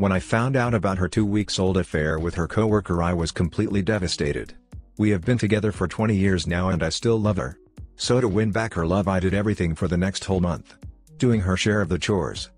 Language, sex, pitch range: English, male, 90-105 Hz